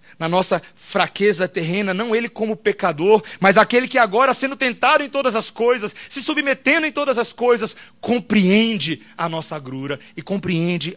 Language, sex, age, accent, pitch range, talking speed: Portuguese, male, 40-59, Brazilian, 165-220 Hz, 165 wpm